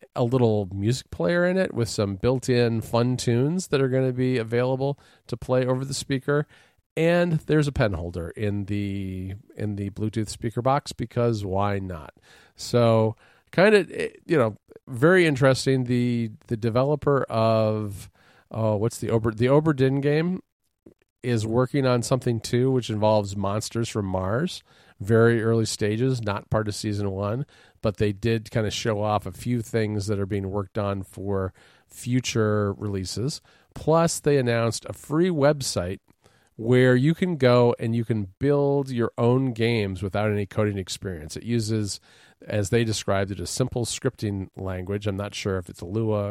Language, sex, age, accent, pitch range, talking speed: English, male, 40-59, American, 100-130 Hz, 165 wpm